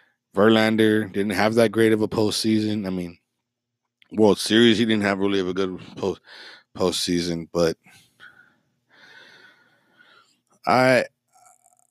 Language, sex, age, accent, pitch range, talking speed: English, male, 30-49, American, 90-120 Hz, 115 wpm